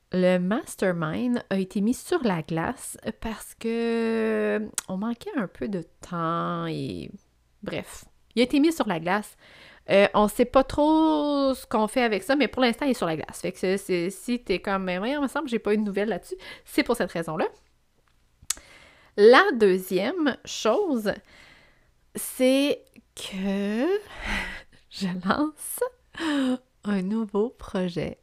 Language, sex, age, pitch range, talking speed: French, female, 30-49, 180-245 Hz, 165 wpm